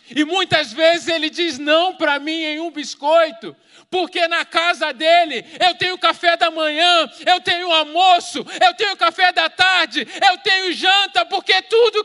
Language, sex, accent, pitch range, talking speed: Portuguese, male, Brazilian, 275-350 Hz, 165 wpm